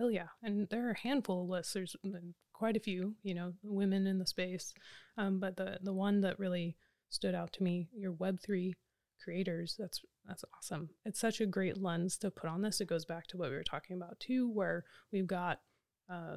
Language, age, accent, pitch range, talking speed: English, 20-39, American, 180-200 Hz, 220 wpm